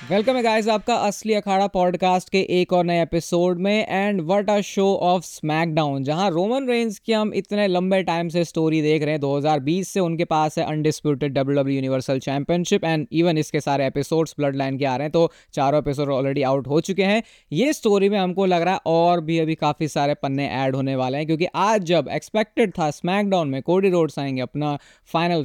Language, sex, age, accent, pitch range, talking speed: Hindi, female, 20-39, native, 150-195 Hz, 205 wpm